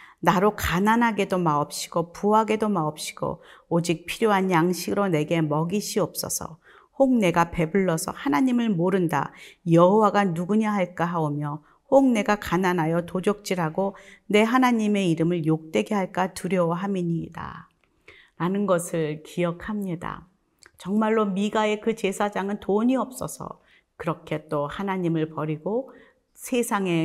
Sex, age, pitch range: female, 40-59, 165-210 Hz